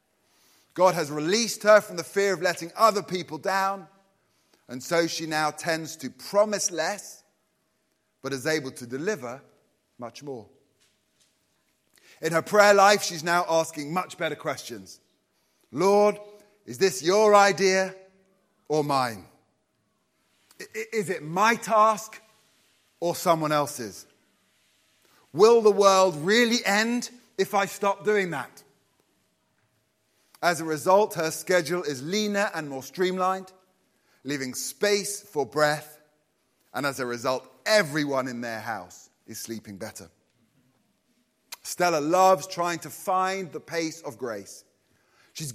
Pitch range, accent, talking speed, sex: 145-195 Hz, British, 125 wpm, male